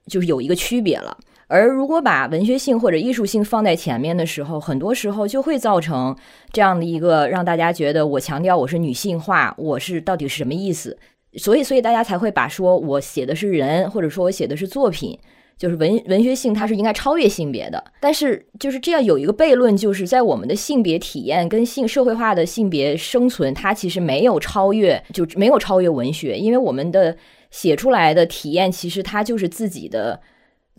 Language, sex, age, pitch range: Chinese, female, 20-39, 165-235 Hz